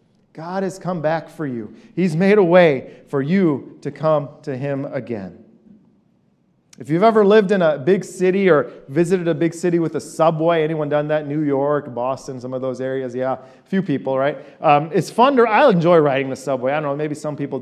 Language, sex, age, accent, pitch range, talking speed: English, male, 40-59, American, 140-185 Hz, 215 wpm